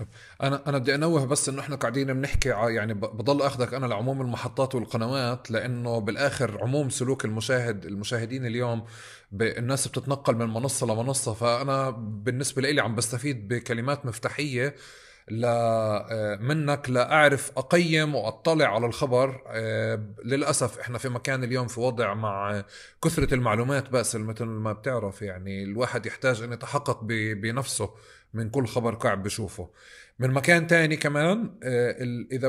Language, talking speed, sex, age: Arabic, 140 wpm, male, 30-49